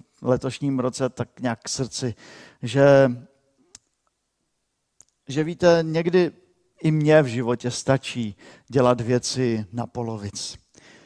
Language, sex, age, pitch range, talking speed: Czech, male, 50-69, 120-145 Hz, 105 wpm